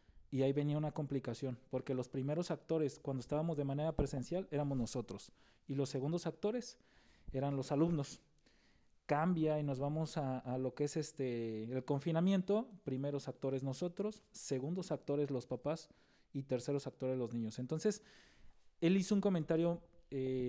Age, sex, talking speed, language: 40-59, male, 155 wpm, Spanish